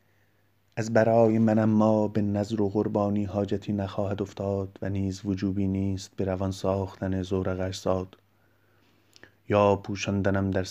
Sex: male